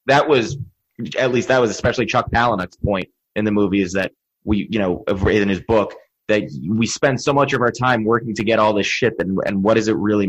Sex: male